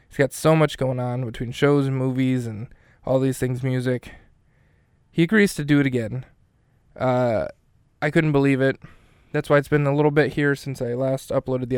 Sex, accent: male, American